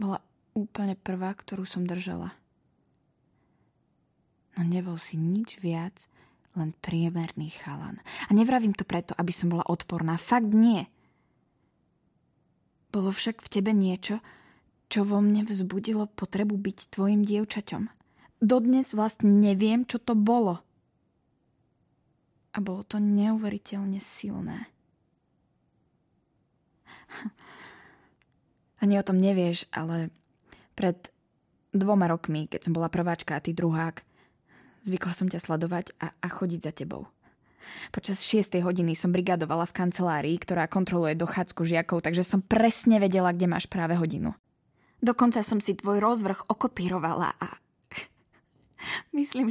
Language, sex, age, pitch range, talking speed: Slovak, female, 20-39, 170-215 Hz, 120 wpm